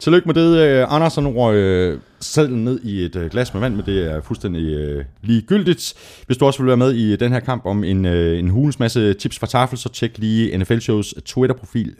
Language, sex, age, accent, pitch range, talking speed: Danish, male, 30-49, native, 85-115 Hz, 200 wpm